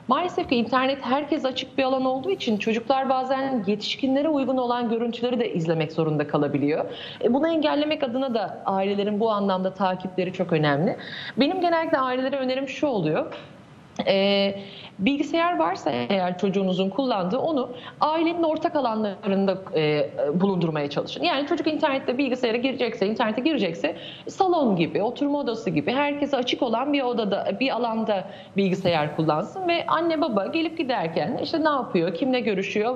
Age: 30-49